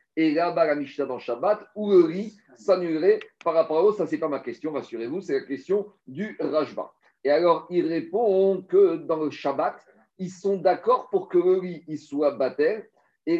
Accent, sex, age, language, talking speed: French, male, 50-69, French, 200 wpm